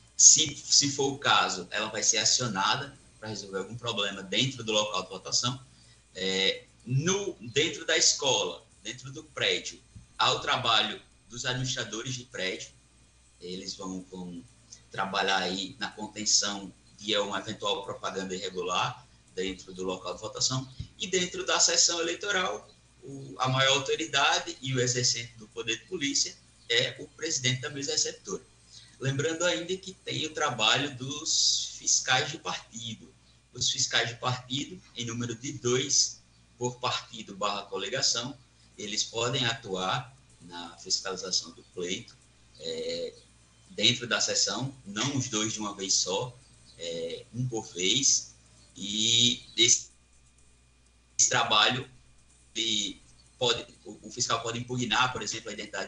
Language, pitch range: Portuguese, 95-135 Hz